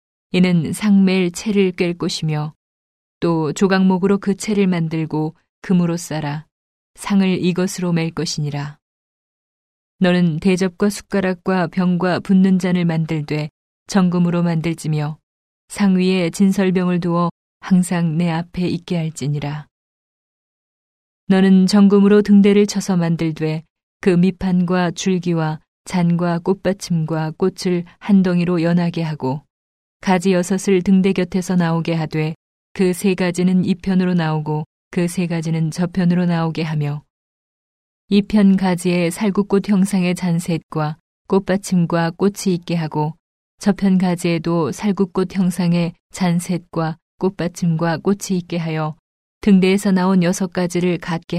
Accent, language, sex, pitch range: native, Korean, female, 160-190 Hz